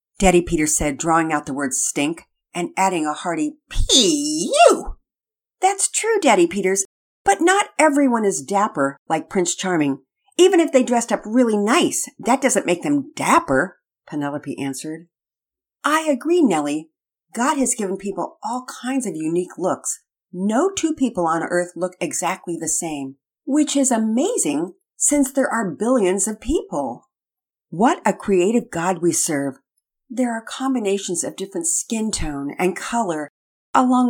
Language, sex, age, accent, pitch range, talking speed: English, female, 50-69, American, 175-280 Hz, 150 wpm